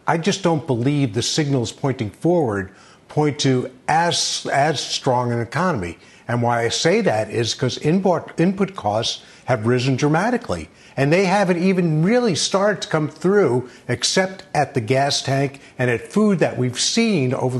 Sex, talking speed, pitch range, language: male, 165 wpm, 125-160 Hz, English